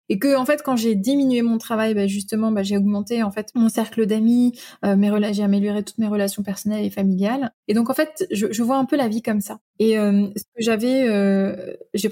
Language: French